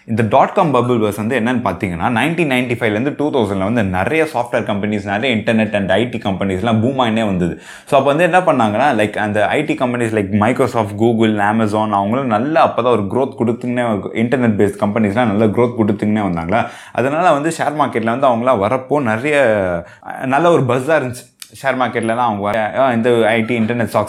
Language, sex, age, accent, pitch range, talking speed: Tamil, male, 20-39, native, 105-130 Hz, 175 wpm